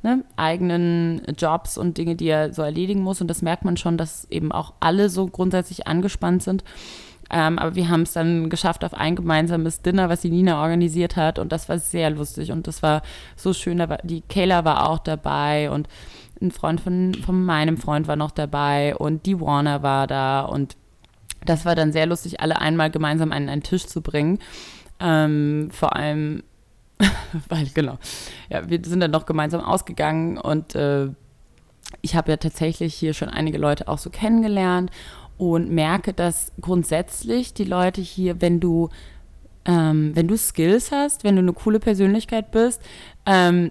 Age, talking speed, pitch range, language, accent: 20-39, 175 wpm, 155-180 Hz, German, German